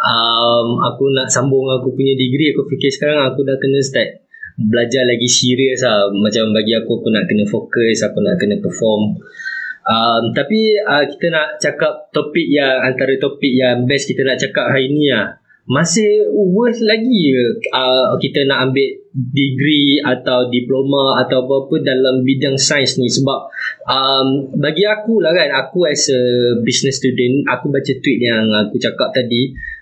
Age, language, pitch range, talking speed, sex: 20-39, Malay, 130-170 Hz, 165 wpm, male